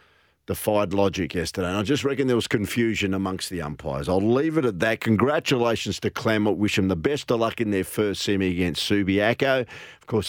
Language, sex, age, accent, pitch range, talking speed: English, male, 50-69, Australian, 95-125 Hz, 205 wpm